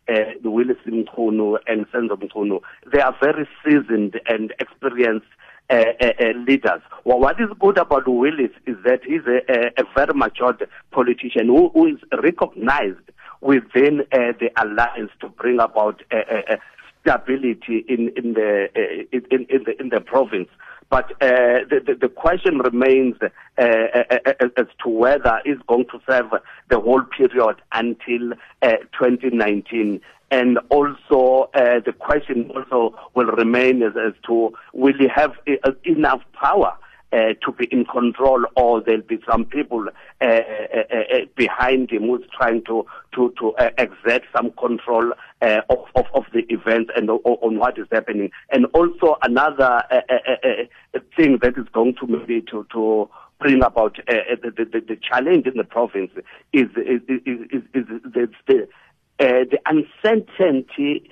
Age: 50-69